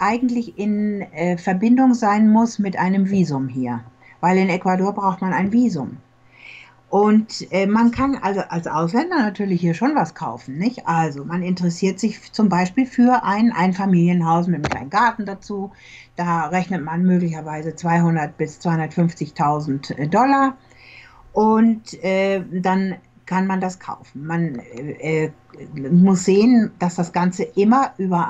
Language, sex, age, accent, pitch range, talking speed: German, female, 60-79, German, 170-205 Hz, 150 wpm